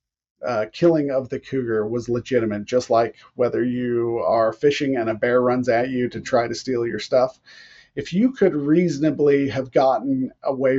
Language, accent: English, American